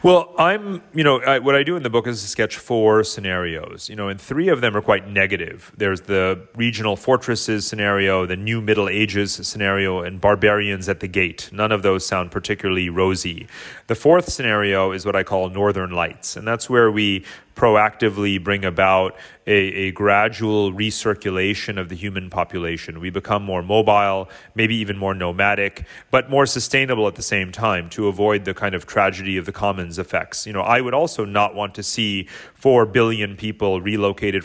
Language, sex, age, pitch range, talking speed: English, male, 30-49, 95-110 Hz, 185 wpm